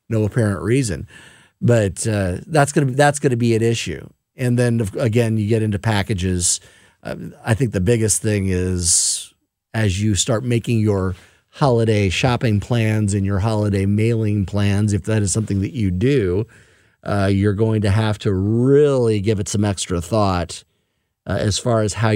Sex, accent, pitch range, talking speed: male, American, 105-130 Hz, 170 wpm